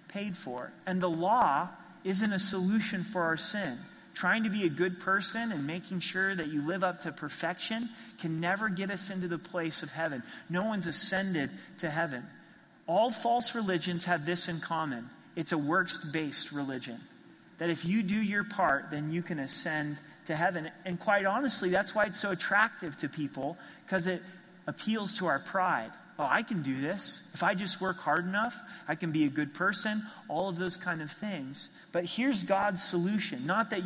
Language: English